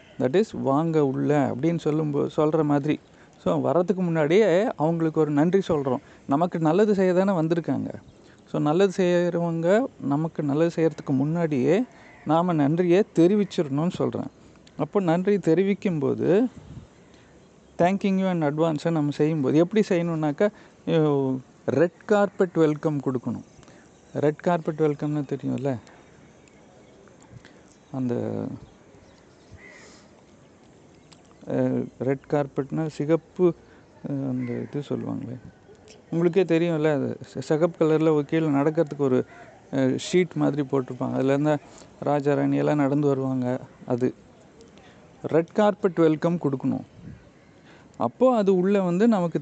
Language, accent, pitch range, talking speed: Tamil, native, 140-175 Hz, 105 wpm